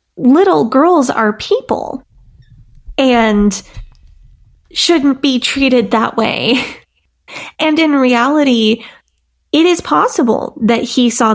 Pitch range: 220-265 Hz